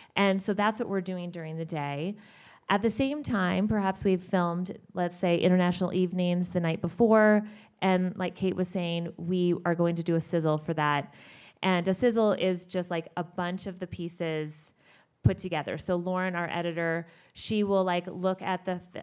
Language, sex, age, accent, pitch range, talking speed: English, female, 20-39, American, 175-210 Hz, 190 wpm